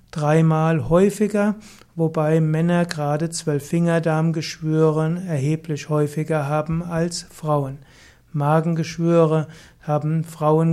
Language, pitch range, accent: German, 155-180 Hz, German